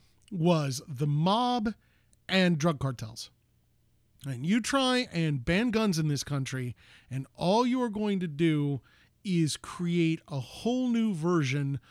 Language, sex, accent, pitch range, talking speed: English, male, American, 140-220 Hz, 140 wpm